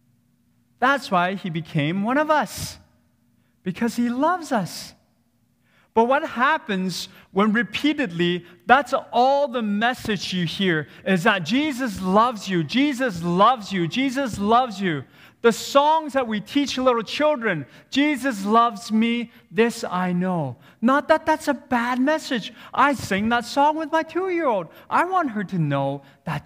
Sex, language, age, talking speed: male, English, 30-49, 145 wpm